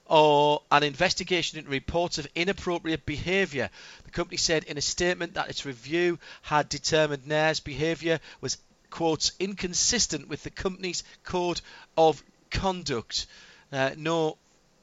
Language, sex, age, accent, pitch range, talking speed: English, male, 40-59, British, 140-170 Hz, 135 wpm